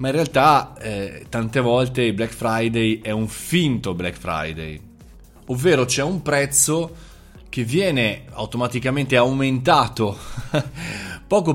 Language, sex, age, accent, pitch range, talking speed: Italian, male, 20-39, native, 95-130 Hz, 120 wpm